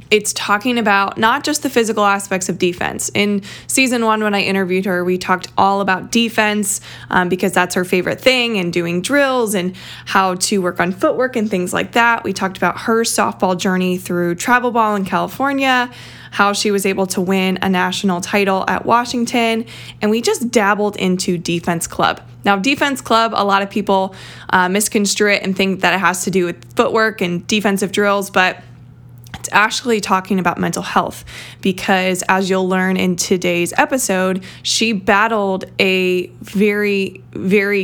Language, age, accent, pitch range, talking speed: English, 20-39, American, 185-215 Hz, 175 wpm